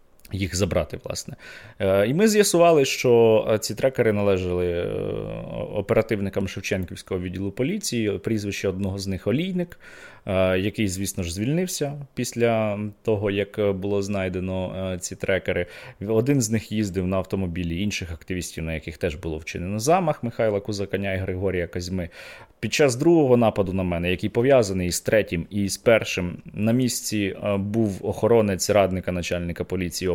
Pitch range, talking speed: 90-115 Hz, 140 wpm